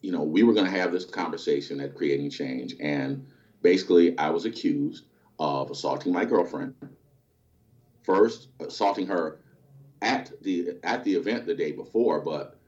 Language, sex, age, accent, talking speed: English, male, 40-59, American, 155 wpm